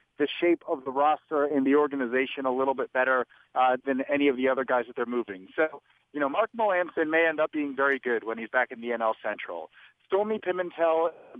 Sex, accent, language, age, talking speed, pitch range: male, American, English, 40-59, 225 wpm, 135-165 Hz